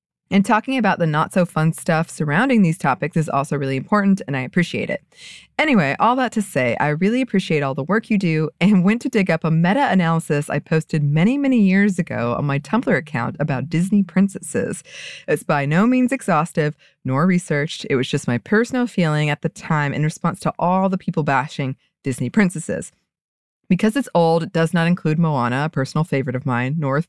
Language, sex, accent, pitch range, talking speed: English, female, American, 140-185 Hz, 195 wpm